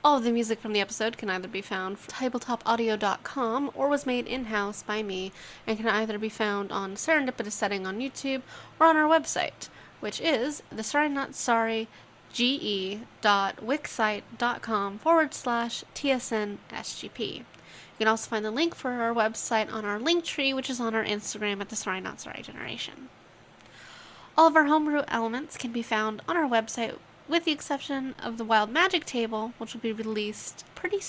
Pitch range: 220-275 Hz